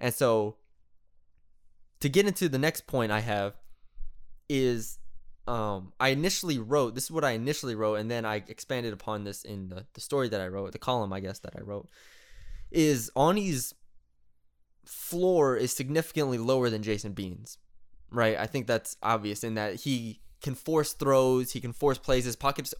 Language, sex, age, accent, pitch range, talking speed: English, male, 20-39, American, 105-130 Hz, 180 wpm